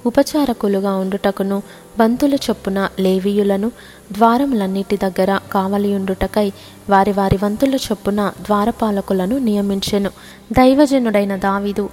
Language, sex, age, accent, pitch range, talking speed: Telugu, female, 20-39, native, 200-230 Hz, 80 wpm